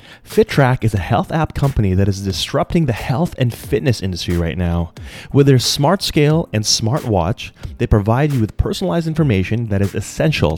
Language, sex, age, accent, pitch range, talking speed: English, male, 30-49, American, 100-145 Hz, 180 wpm